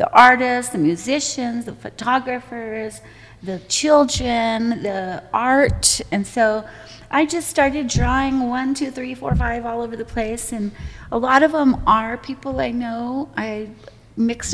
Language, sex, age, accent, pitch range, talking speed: English, female, 30-49, American, 185-235 Hz, 150 wpm